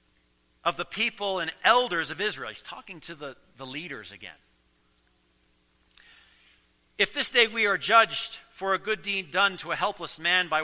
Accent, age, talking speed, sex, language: American, 40-59, 170 wpm, male, English